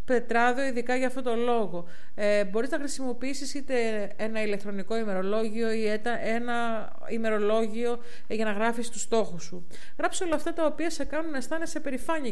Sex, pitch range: female, 215-265 Hz